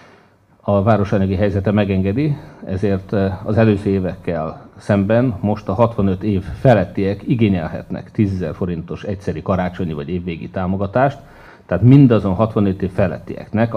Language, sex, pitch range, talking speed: Hungarian, male, 90-110 Hz, 120 wpm